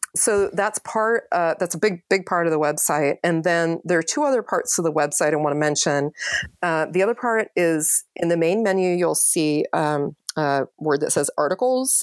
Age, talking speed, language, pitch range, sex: 30-49, 215 wpm, English, 150-180 Hz, female